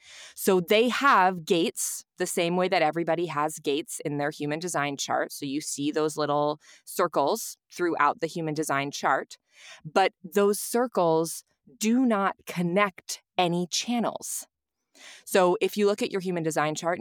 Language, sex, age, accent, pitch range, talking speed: English, female, 20-39, American, 150-195 Hz, 155 wpm